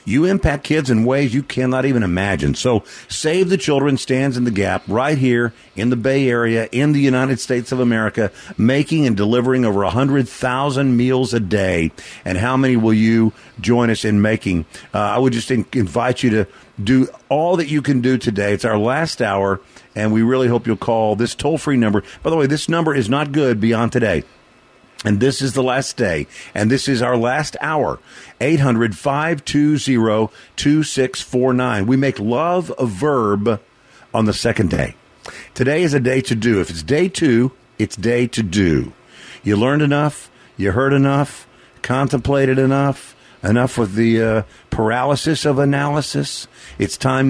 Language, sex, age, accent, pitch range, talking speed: English, male, 50-69, American, 110-135 Hz, 175 wpm